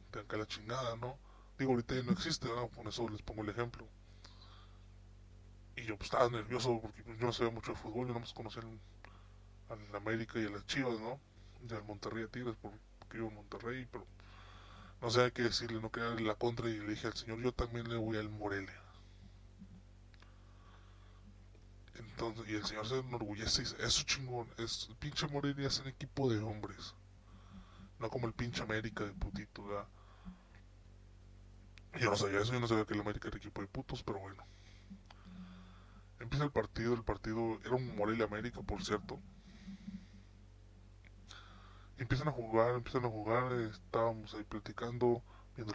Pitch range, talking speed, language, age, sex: 95-120 Hz, 180 wpm, Spanish, 20-39, female